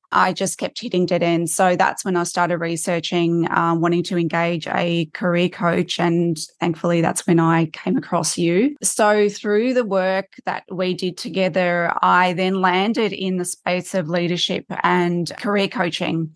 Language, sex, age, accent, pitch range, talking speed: English, female, 20-39, Australian, 170-190 Hz, 170 wpm